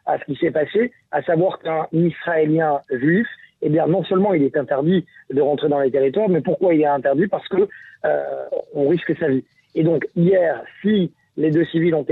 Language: French